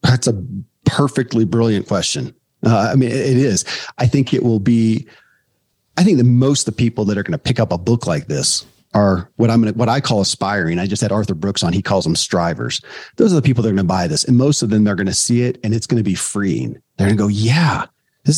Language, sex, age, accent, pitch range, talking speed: English, male, 40-59, American, 100-125 Hz, 270 wpm